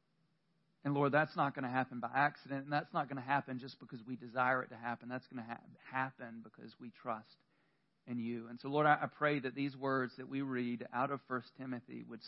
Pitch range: 115-135 Hz